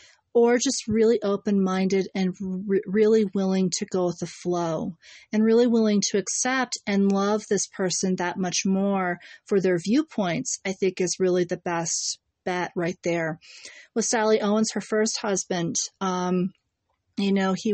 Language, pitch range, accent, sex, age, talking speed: English, 180-210 Hz, American, female, 40-59, 155 wpm